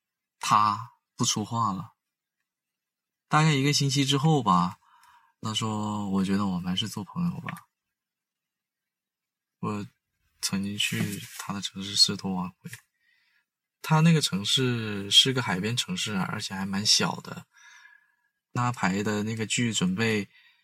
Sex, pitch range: male, 105-140 Hz